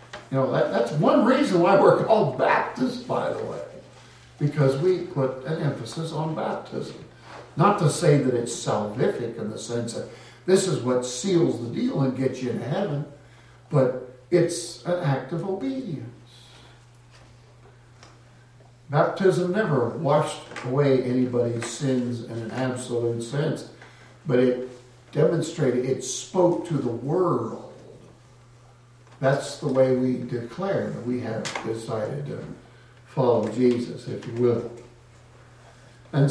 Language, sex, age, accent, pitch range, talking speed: English, male, 60-79, American, 120-165 Hz, 130 wpm